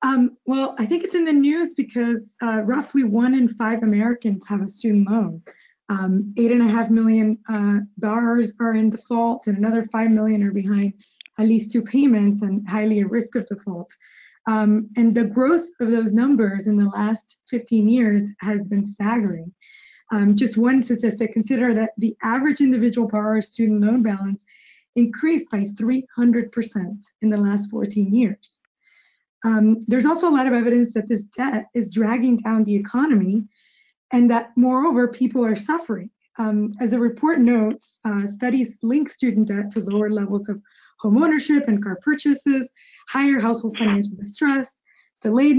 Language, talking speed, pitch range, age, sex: English, 165 wpm, 210-245 Hz, 20-39, female